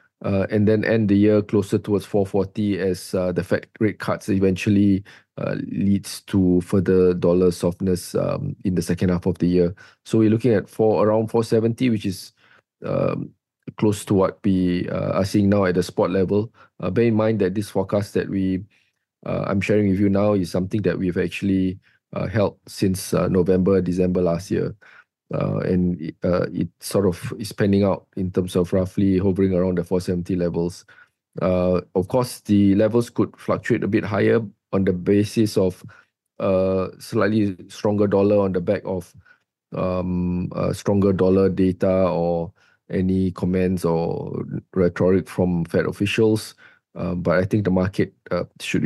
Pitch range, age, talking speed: 90-105 Hz, 20-39, 175 wpm